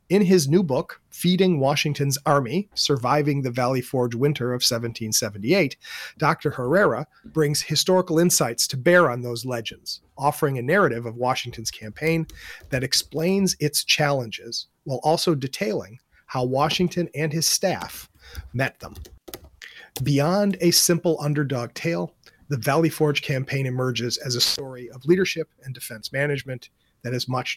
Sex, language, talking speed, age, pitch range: male, English, 140 wpm, 40-59, 125-160 Hz